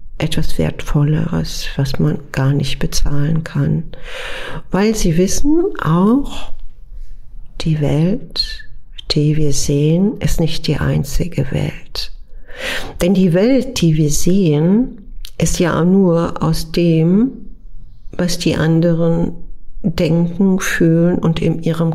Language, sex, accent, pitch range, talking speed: German, female, German, 155-175 Hz, 110 wpm